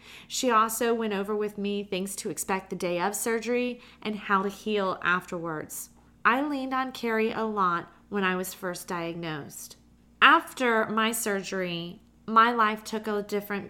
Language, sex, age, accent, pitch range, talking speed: English, female, 30-49, American, 185-230 Hz, 160 wpm